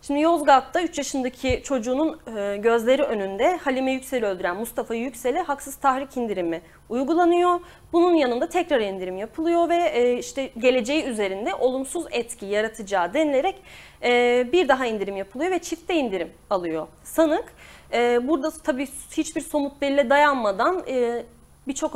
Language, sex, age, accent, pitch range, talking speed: Turkish, female, 30-49, native, 220-295 Hz, 125 wpm